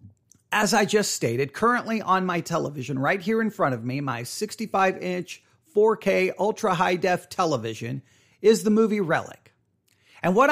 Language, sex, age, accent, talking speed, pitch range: English, male, 40-59, American, 145 wpm, 160-215 Hz